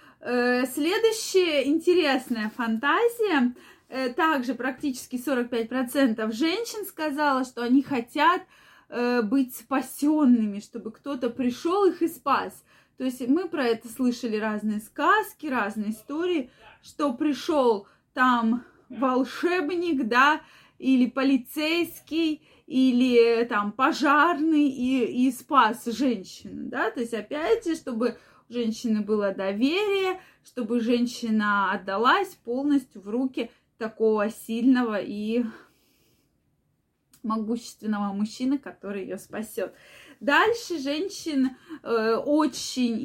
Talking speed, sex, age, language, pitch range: 100 wpm, female, 20-39, Russian, 230-305 Hz